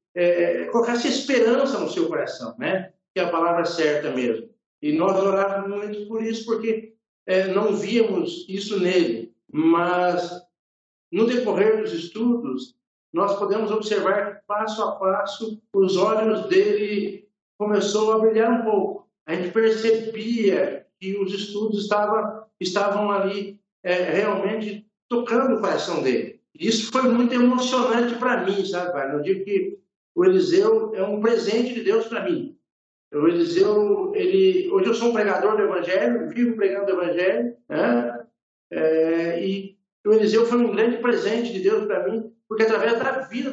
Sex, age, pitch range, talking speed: male, 60-79, 190-245 Hz, 155 wpm